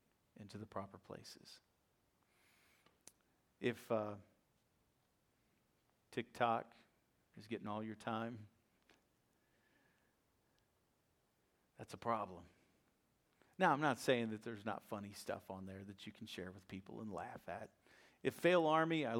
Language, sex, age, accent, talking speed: English, male, 40-59, American, 120 wpm